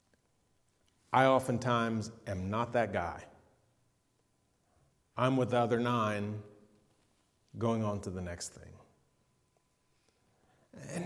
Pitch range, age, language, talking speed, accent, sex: 130-170 Hz, 40-59, English, 100 wpm, American, male